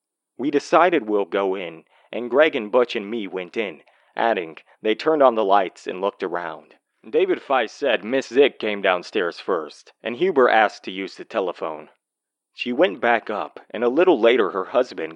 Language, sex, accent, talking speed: English, male, American, 185 wpm